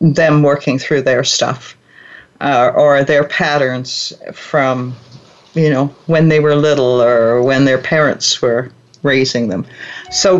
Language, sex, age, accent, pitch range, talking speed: English, female, 50-69, American, 145-190 Hz, 140 wpm